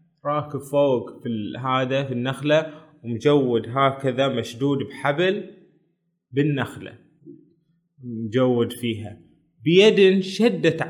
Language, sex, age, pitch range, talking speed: Arabic, male, 20-39, 130-165 Hz, 85 wpm